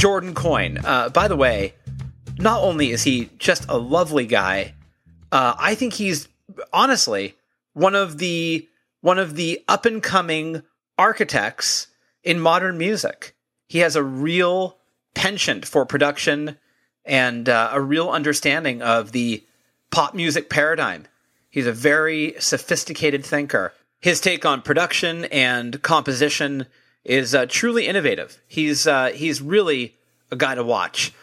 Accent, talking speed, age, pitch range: American, 140 wpm, 30-49, 135-175 Hz